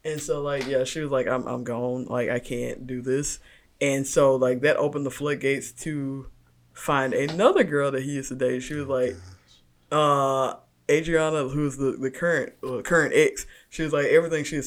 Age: 20-39